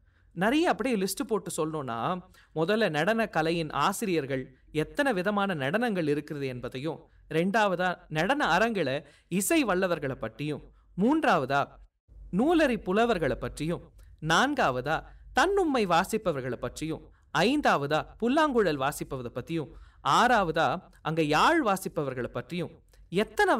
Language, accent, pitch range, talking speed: Tamil, native, 135-220 Hz, 95 wpm